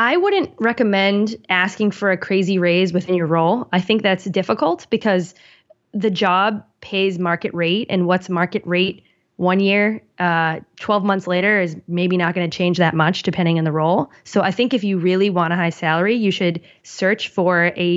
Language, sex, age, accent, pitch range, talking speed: English, female, 20-39, American, 170-205 Hz, 195 wpm